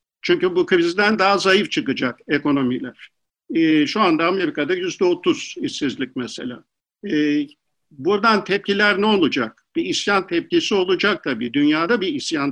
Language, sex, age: Turkish, male, 50-69